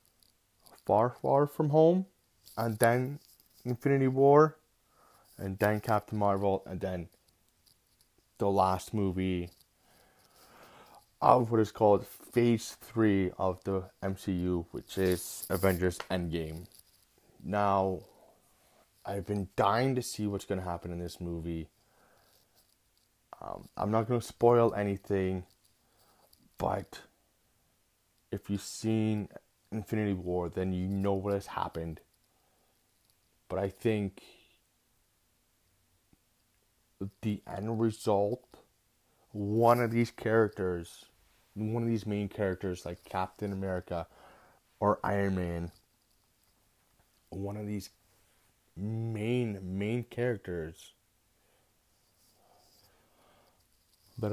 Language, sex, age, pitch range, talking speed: English, male, 20-39, 95-115 Hz, 100 wpm